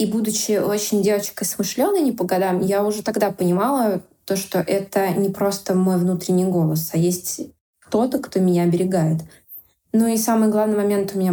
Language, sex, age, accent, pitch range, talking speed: Russian, female, 20-39, native, 180-210 Hz, 175 wpm